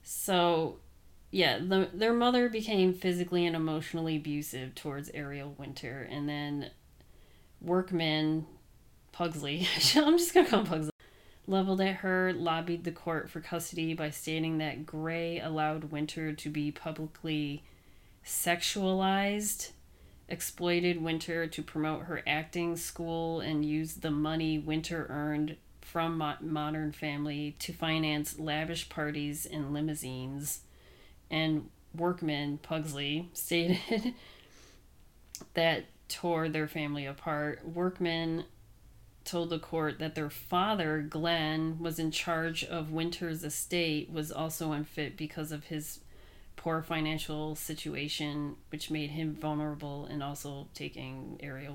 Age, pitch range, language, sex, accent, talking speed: 30-49, 150-170 Hz, English, female, American, 120 wpm